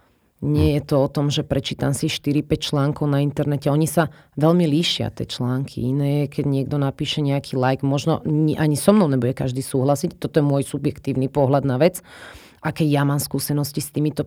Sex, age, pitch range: female, 30-49, 135-160 Hz